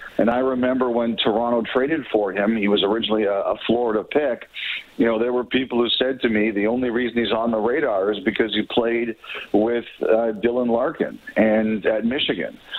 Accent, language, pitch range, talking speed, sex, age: American, English, 110-125 Hz, 190 wpm, male, 50-69